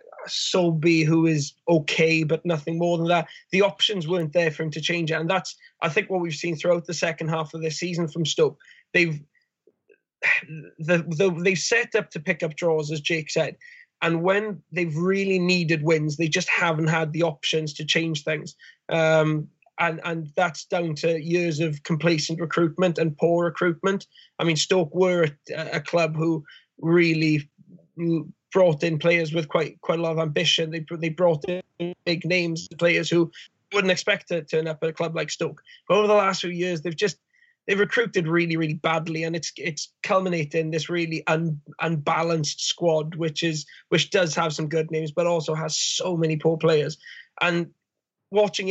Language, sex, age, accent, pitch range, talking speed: English, male, 20-39, British, 160-175 Hz, 185 wpm